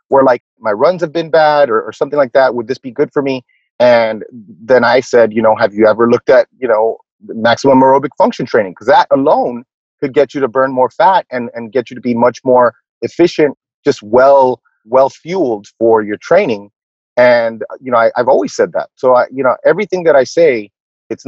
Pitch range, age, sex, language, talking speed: 110-145 Hz, 30-49, male, English, 220 wpm